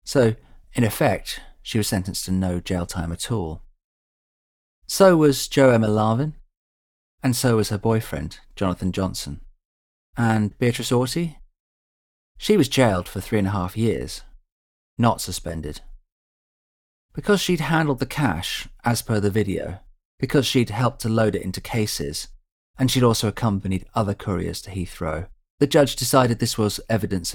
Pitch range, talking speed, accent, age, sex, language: 85-120 Hz, 150 wpm, British, 40-59, male, English